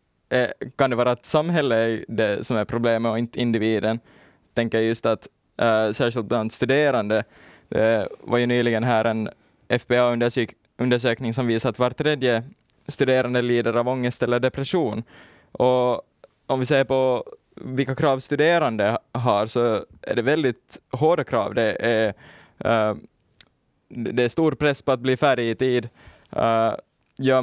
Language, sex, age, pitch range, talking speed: Swedish, male, 20-39, 115-135 Hz, 150 wpm